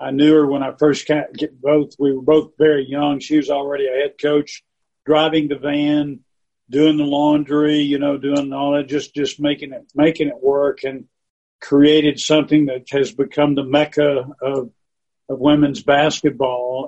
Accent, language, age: American, English, 50-69